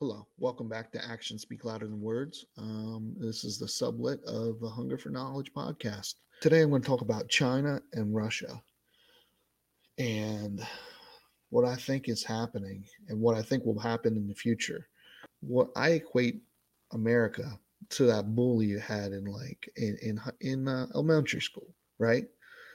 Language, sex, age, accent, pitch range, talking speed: English, male, 30-49, American, 110-130 Hz, 165 wpm